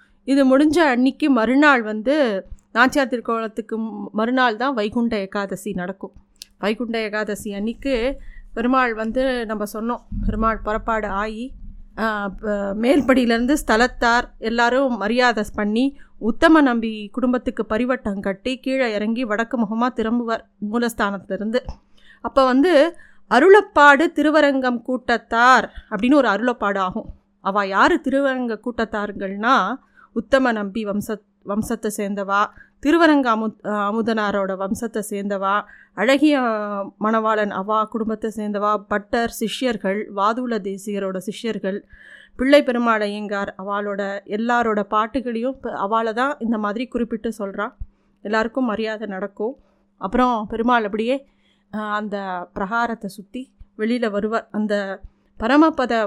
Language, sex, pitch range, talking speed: Tamil, female, 210-255 Hz, 105 wpm